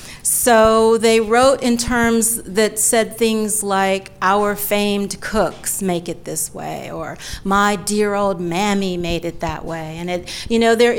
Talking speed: 165 wpm